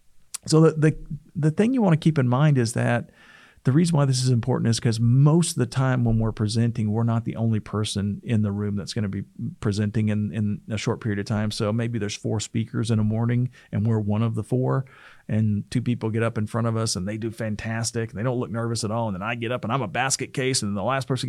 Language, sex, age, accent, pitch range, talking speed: English, male, 40-59, American, 110-135 Hz, 270 wpm